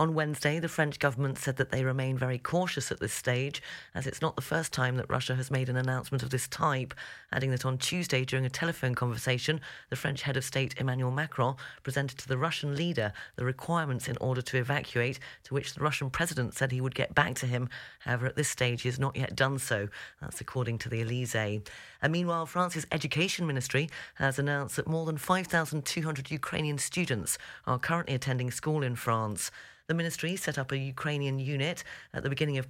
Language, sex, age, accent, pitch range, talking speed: English, female, 40-59, British, 125-150 Hz, 205 wpm